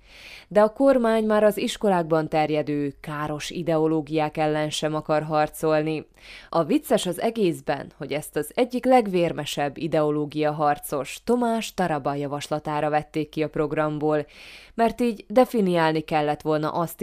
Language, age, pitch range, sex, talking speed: Hungarian, 20-39, 150-205 Hz, female, 130 wpm